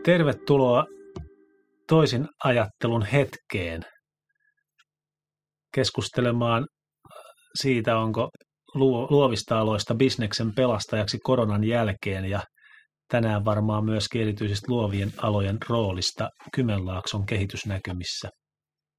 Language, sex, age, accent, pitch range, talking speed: Finnish, male, 30-49, native, 105-150 Hz, 75 wpm